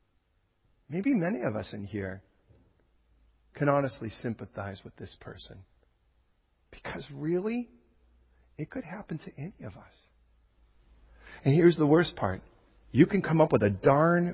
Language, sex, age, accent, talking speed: English, male, 40-59, American, 140 wpm